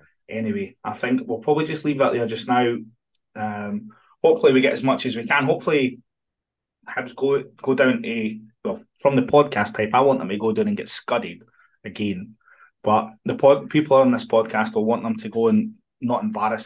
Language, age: English, 20-39